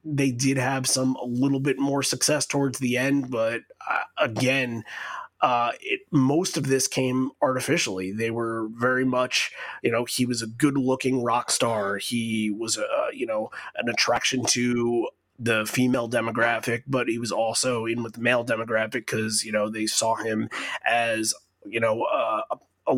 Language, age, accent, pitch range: English, 30-49, American, 110-130 Hz